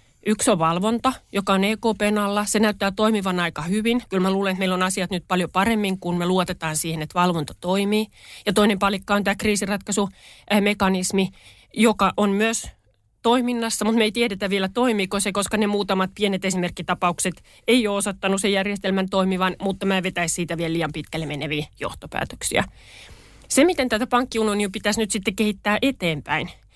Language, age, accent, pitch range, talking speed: Finnish, 30-49, native, 180-215 Hz, 170 wpm